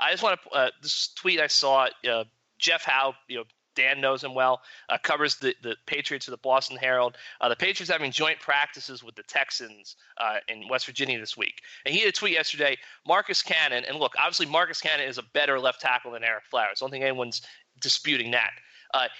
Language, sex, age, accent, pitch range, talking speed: English, male, 30-49, American, 130-220 Hz, 220 wpm